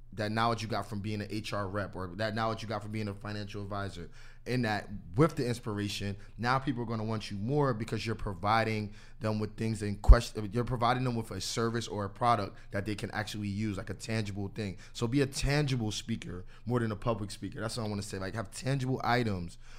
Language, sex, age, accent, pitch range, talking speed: English, male, 20-39, American, 105-125 Hz, 230 wpm